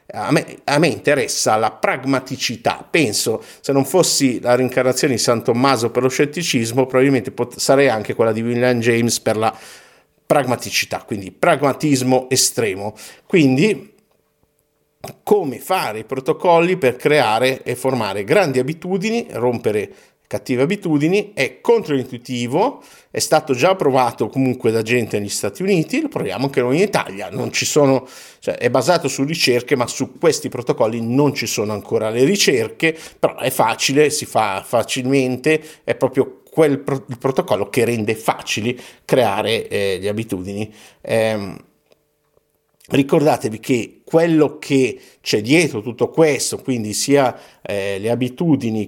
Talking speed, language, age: 135 wpm, Italian, 50-69